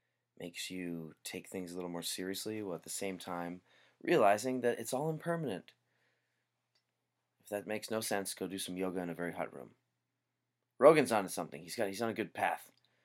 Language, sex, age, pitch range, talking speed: English, male, 30-49, 85-115 Hz, 195 wpm